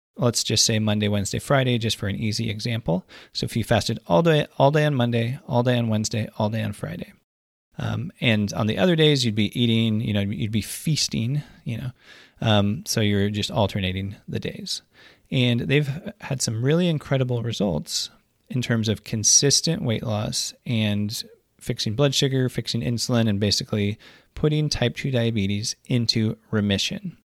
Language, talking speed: English, 175 wpm